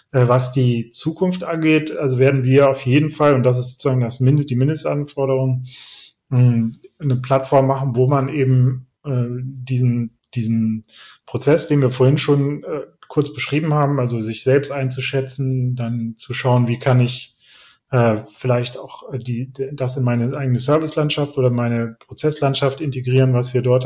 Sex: male